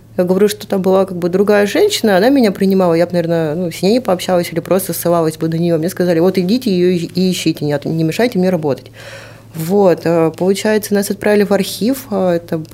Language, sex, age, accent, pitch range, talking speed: Russian, female, 20-39, native, 165-200 Hz, 205 wpm